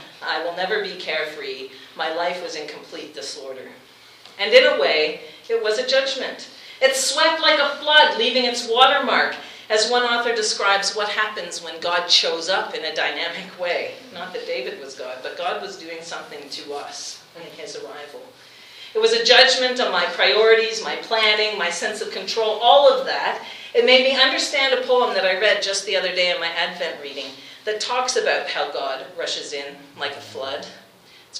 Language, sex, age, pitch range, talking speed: English, female, 40-59, 195-280 Hz, 190 wpm